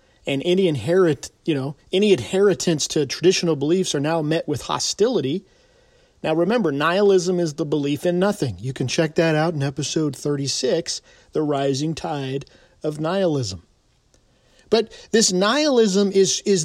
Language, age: English, 40-59